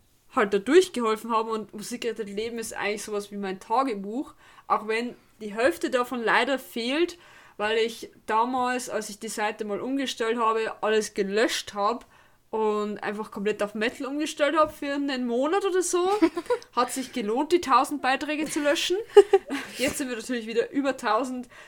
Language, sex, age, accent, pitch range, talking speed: German, female, 20-39, German, 215-270 Hz, 170 wpm